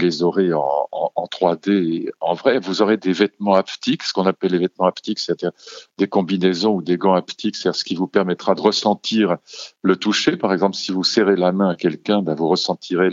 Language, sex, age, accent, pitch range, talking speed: French, male, 50-69, French, 85-100 Hz, 215 wpm